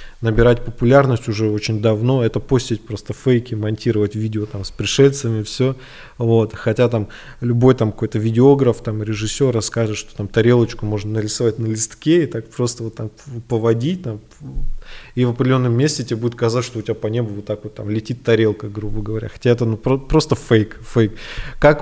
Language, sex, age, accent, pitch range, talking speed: Russian, male, 20-39, native, 115-140 Hz, 185 wpm